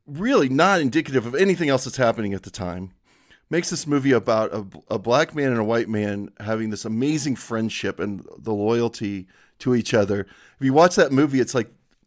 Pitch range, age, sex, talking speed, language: 105-135 Hz, 40-59, male, 200 wpm, English